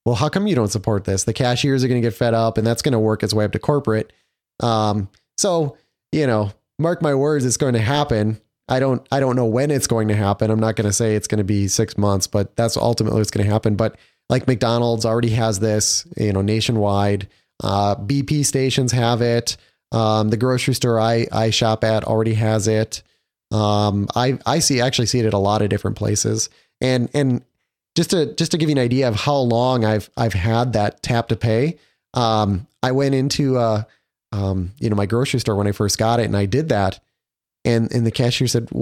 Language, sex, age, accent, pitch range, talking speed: English, male, 30-49, American, 110-135 Hz, 230 wpm